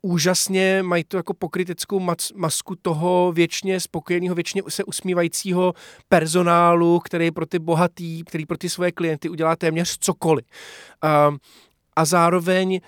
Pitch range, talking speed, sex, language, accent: 155-185 Hz, 125 wpm, male, Czech, native